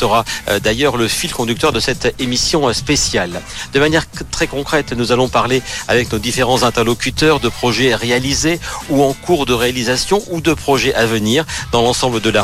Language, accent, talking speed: French, French, 180 wpm